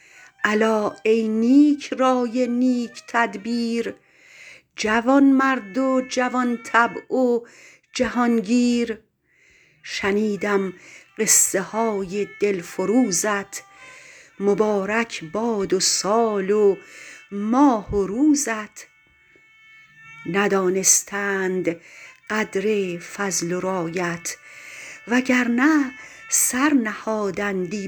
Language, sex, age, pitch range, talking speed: Persian, female, 50-69, 195-250 Hz, 70 wpm